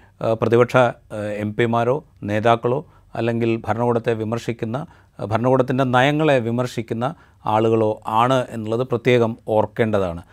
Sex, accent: male, native